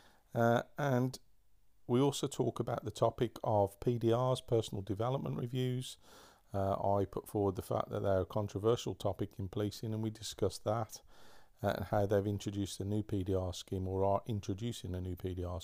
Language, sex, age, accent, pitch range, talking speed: English, male, 40-59, British, 95-115 Hz, 175 wpm